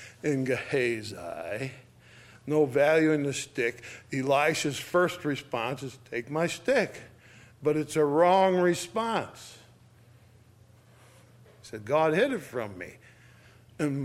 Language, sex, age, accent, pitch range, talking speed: English, male, 50-69, American, 125-170 Hz, 115 wpm